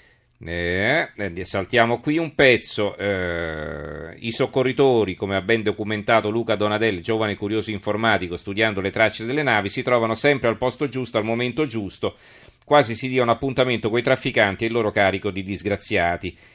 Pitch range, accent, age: 95-115 Hz, native, 40-59